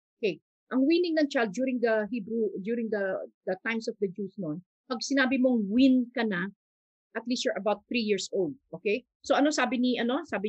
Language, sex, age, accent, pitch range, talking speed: Filipino, female, 50-69, native, 205-260 Hz, 205 wpm